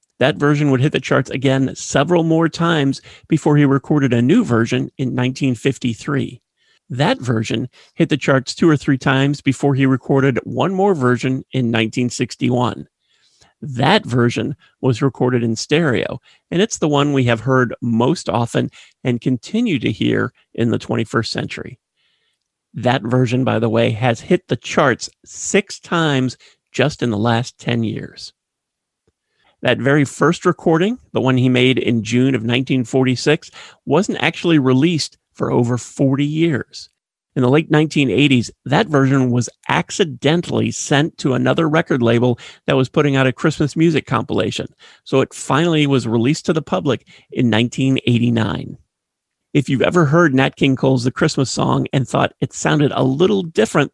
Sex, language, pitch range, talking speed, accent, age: male, English, 125-150 Hz, 160 wpm, American, 40-59